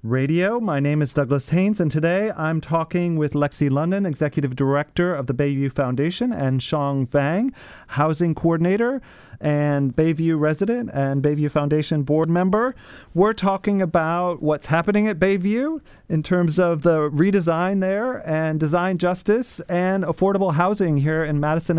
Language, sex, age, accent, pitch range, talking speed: English, male, 30-49, American, 150-185 Hz, 150 wpm